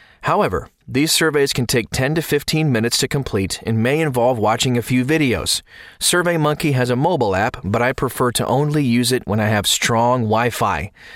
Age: 30-49